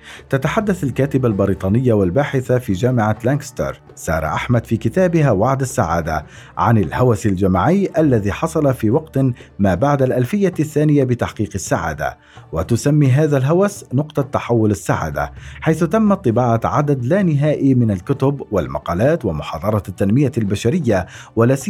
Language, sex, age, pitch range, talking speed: Arabic, male, 50-69, 110-150 Hz, 125 wpm